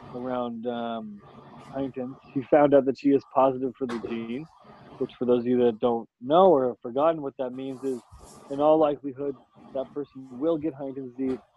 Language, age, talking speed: English, 20-39, 190 wpm